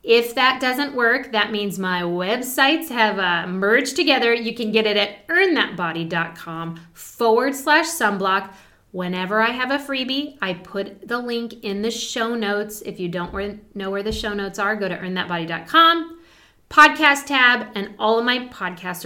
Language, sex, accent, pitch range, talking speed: English, female, American, 200-265 Hz, 165 wpm